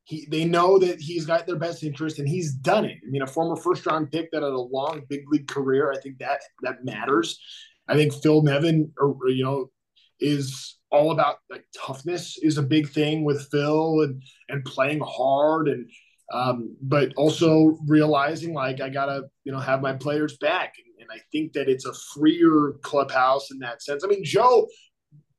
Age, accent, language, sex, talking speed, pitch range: 20-39, American, English, male, 195 wpm, 140-175 Hz